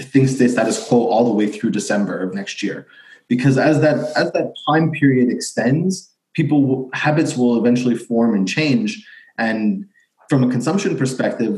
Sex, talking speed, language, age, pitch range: male, 175 wpm, English, 30-49, 115-145 Hz